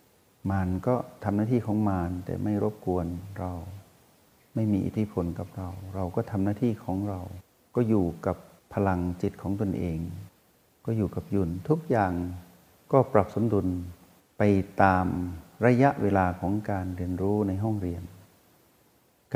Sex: male